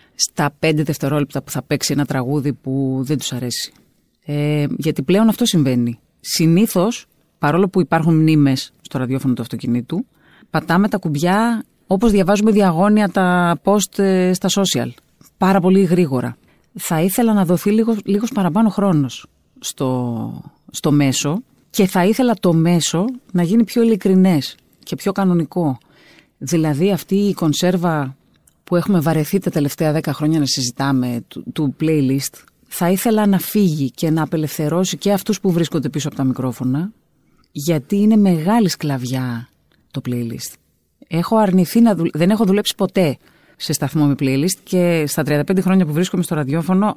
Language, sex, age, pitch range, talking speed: Greek, female, 30-49, 145-195 Hz, 145 wpm